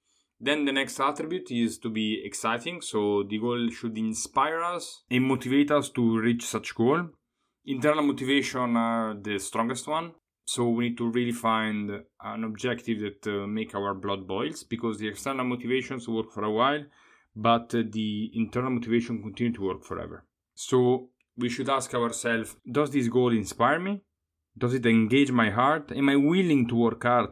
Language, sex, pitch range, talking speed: English, male, 105-130 Hz, 175 wpm